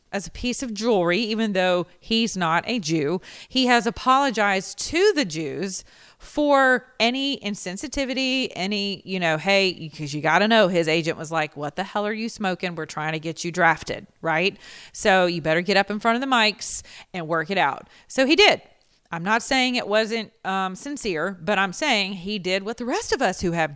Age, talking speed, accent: 30-49, 205 wpm, American